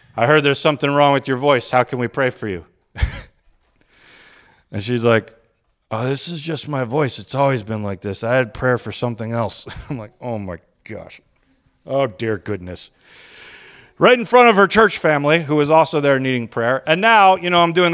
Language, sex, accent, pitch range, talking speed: English, male, American, 115-140 Hz, 205 wpm